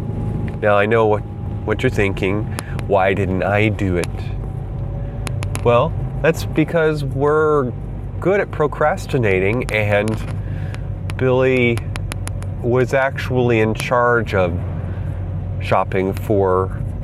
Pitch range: 100-125 Hz